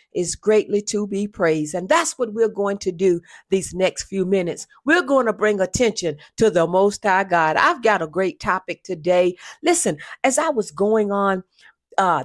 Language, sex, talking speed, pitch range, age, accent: English, female, 190 wpm, 175-220 Hz, 50-69, American